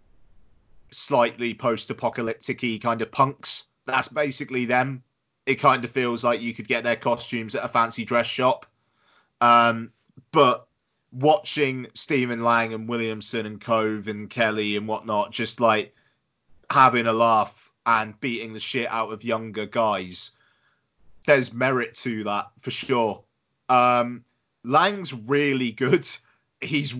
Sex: male